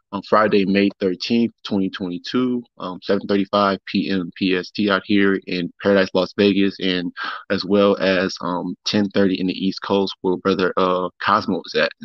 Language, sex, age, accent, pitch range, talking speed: English, male, 20-39, American, 100-110 Hz, 155 wpm